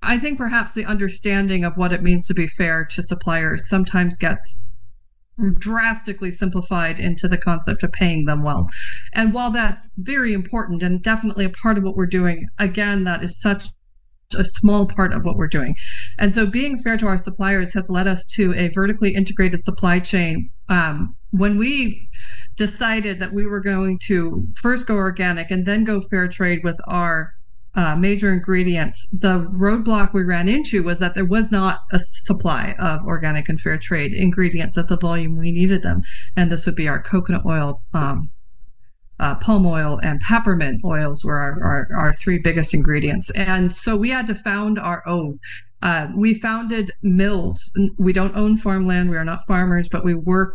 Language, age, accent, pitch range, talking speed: English, 40-59, American, 165-200 Hz, 185 wpm